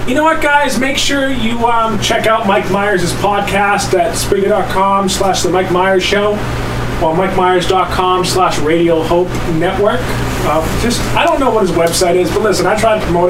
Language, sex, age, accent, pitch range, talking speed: English, male, 30-49, American, 165-215 Hz, 175 wpm